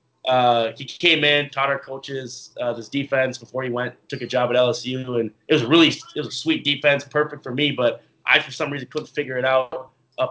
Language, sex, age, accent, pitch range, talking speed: English, male, 20-39, American, 120-145 Hz, 235 wpm